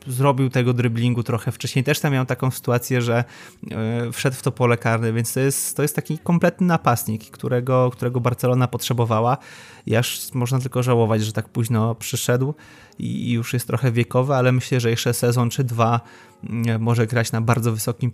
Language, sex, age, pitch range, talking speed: Polish, male, 20-39, 115-130 Hz, 175 wpm